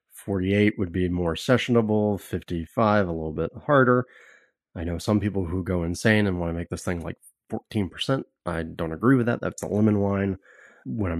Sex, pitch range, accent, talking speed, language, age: male, 90-110 Hz, American, 195 wpm, English, 30-49